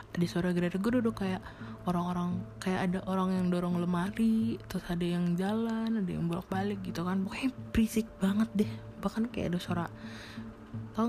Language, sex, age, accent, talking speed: Indonesian, female, 20-39, native, 175 wpm